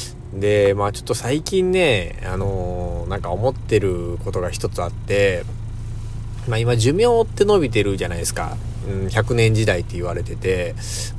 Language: Japanese